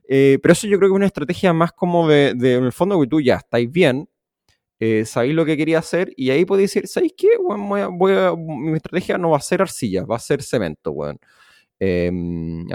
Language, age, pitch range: Spanish, 20-39, 120-160 Hz